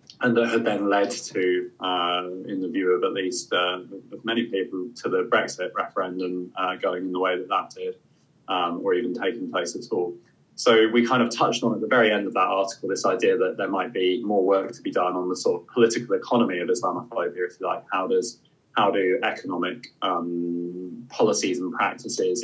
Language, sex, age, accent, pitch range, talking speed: English, male, 20-39, British, 90-140 Hz, 215 wpm